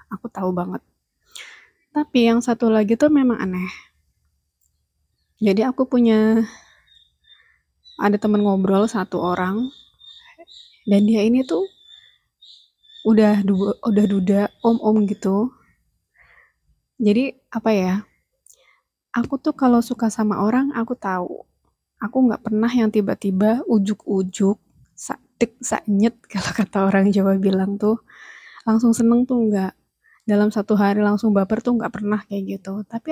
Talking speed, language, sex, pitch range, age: 120 wpm, Indonesian, female, 205-255 Hz, 20-39